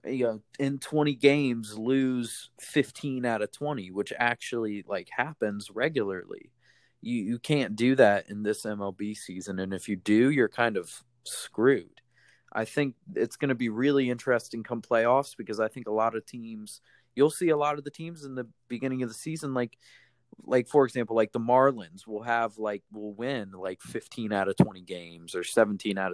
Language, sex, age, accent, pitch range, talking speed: English, male, 20-39, American, 110-140 Hz, 190 wpm